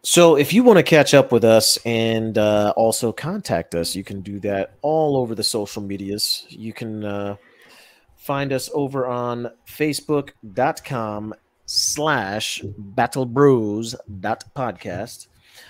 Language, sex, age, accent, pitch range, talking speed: English, male, 30-49, American, 105-140 Hz, 125 wpm